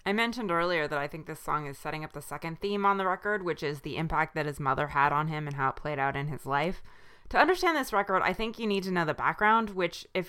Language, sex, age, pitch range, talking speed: English, female, 20-39, 150-185 Hz, 285 wpm